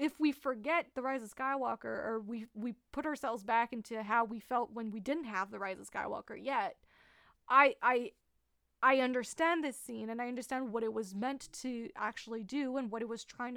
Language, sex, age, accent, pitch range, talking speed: English, female, 20-39, American, 225-265 Hz, 210 wpm